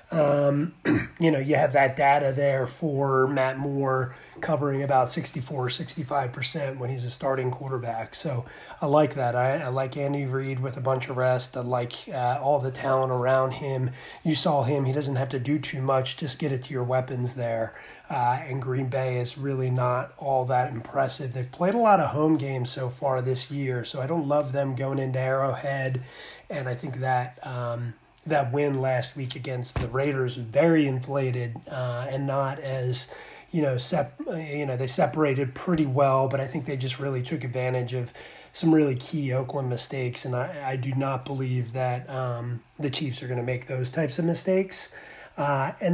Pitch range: 130-155 Hz